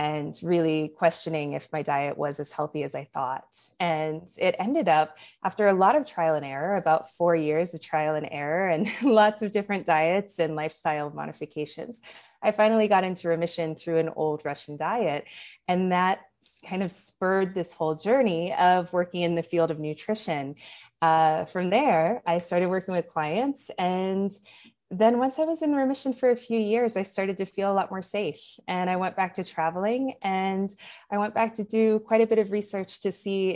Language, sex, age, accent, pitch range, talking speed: English, female, 20-39, American, 155-195 Hz, 195 wpm